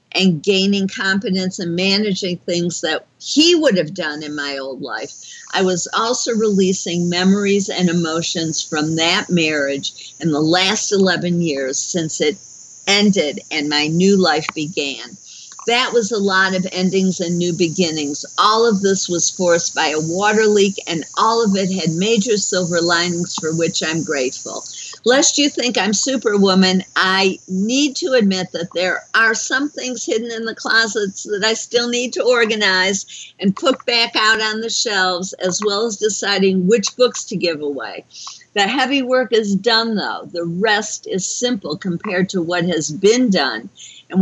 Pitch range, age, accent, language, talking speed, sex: 170-220 Hz, 50-69, American, English, 170 wpm, female